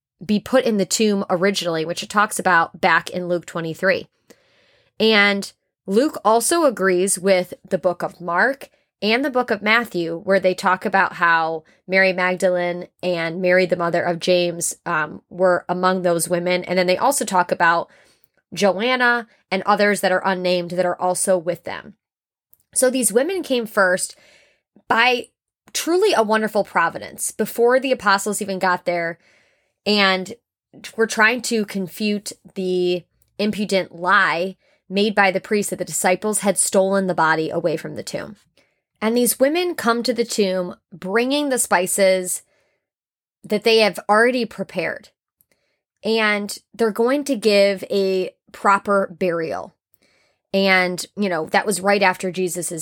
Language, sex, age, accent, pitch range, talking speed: English, female, 20-39, American, 180-215 Hz, 150 wpm